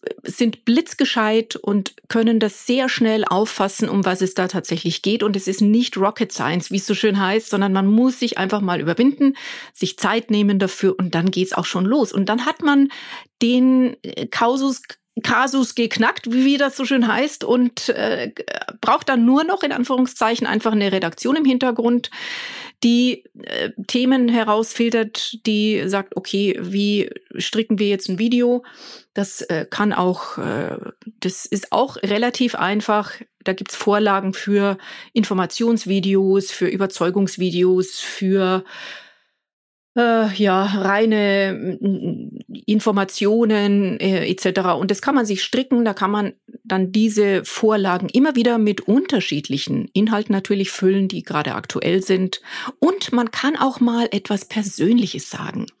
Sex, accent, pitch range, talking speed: female, German, 195-240 Hz, 145 wpm